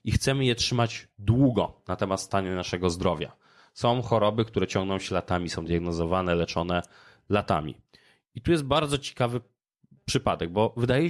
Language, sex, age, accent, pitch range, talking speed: Polish, male, 20-39, native, 95-125 Hz, 150 wpm